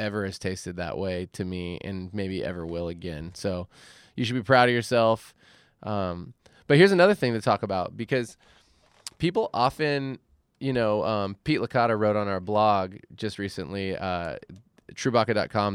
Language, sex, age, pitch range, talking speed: English, male, 20-39, 95-125 Hz, 165 wpm